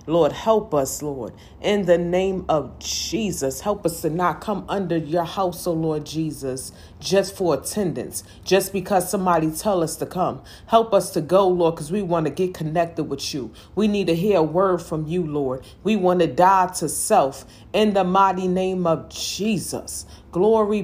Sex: female